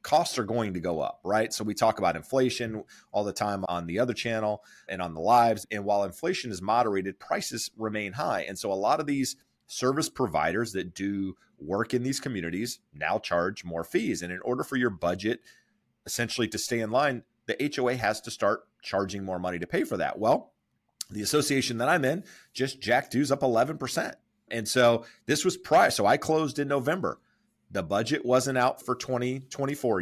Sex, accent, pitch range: male, American, 105-130 Hz